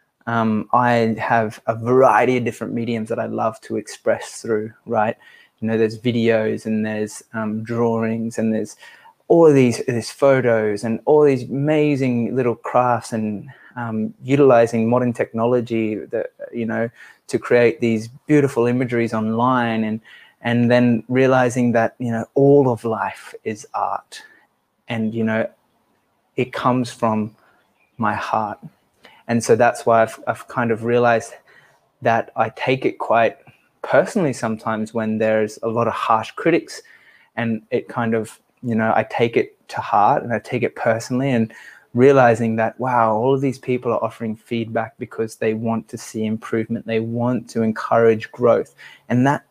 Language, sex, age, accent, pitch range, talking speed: English, male, 20-39, Australian, 110-125 Hz, 160 wpm